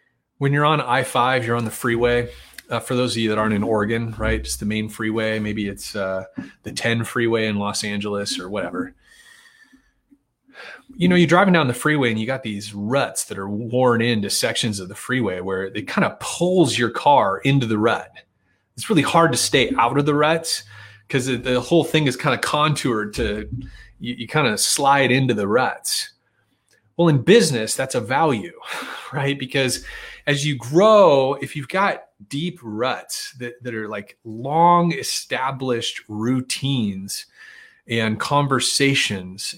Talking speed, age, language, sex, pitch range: 170 wpm, 30-49, English, male, 110-145 Hz